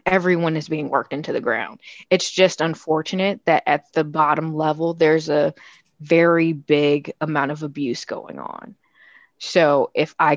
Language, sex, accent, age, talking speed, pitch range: English, female, American, 20-39, 155 wpm, 155-180 Hz